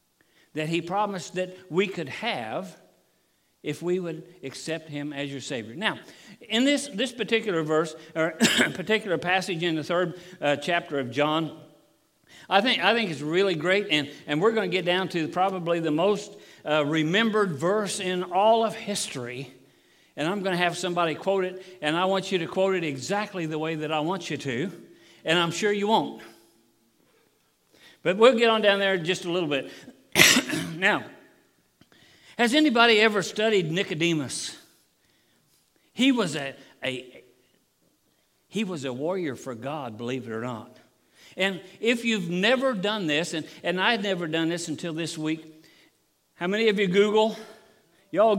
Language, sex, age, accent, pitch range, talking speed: English, male, 60-79, American, 155-205 Hz, 165 wpm